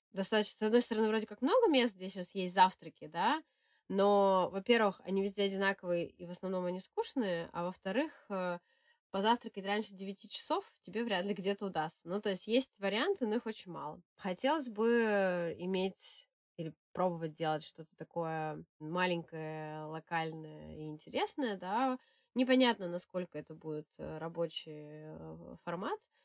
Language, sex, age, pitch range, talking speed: Russian, female, 20-39, 175-220 Hz, 140 wpm